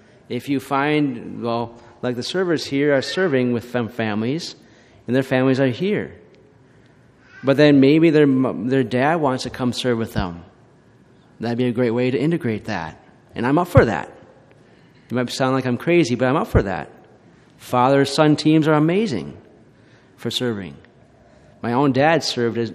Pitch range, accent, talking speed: 120-145 Hz, American, 170 wpm